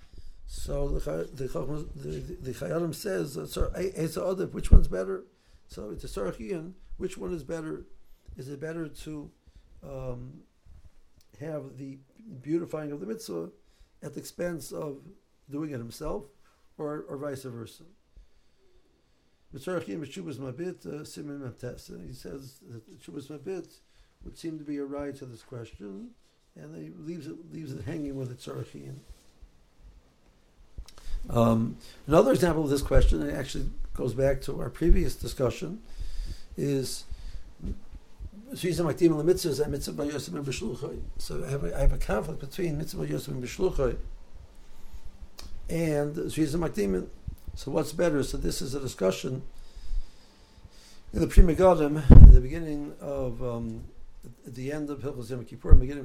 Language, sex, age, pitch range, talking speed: English, male, 60-79, 95-155 Hz, 125 wpm